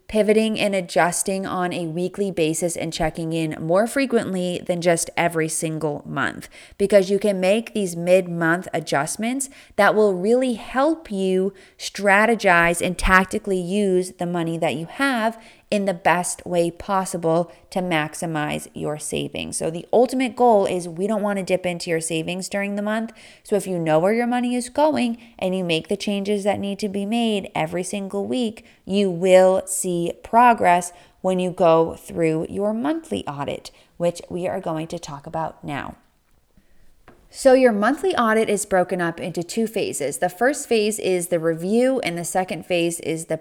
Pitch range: 170-210 Hz